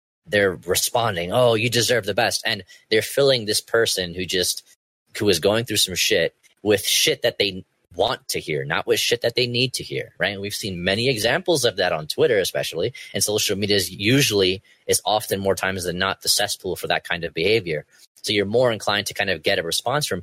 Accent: American